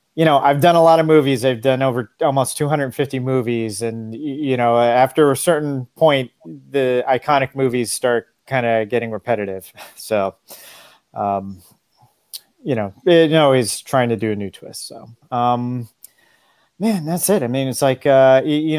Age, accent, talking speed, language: 30-49, American, 170 wpm, English